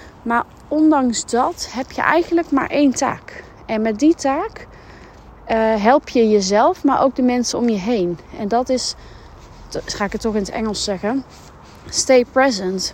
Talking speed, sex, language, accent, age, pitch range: 170 wpm, female, Dutch, Dutch, 30-49, 215-265 Hz